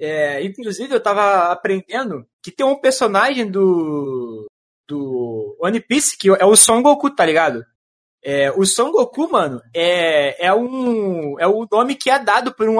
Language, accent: Portuguese, Brazilian